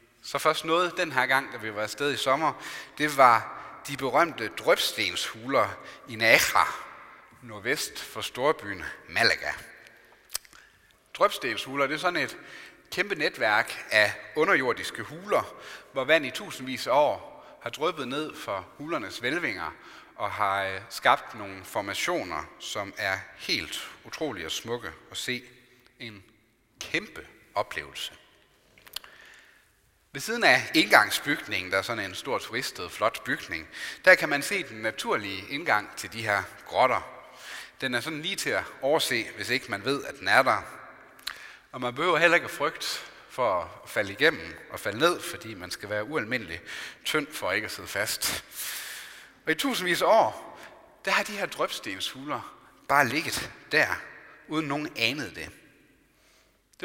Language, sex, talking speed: Danish, male, 150 wpm